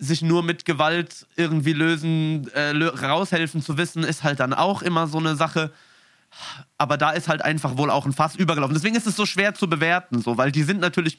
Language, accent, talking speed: German, German, 215 wpm